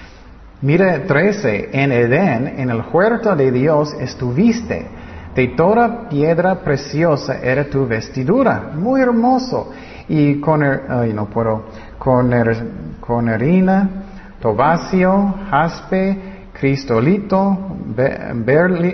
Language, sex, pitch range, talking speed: Spanish, male, 115-175 Hz, 100 wpm